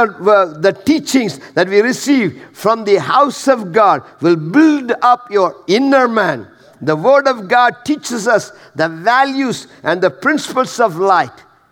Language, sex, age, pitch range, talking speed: English, male, 50-69, 185-275 Hz, 150 wpm